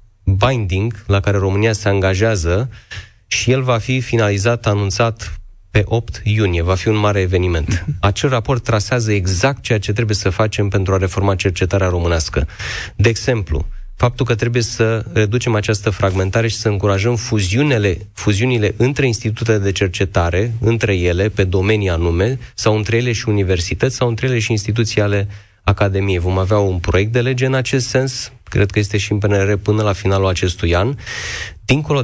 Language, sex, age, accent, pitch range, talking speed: Romanian, male, 30-49, native, 95-115 Hz, 165 wpm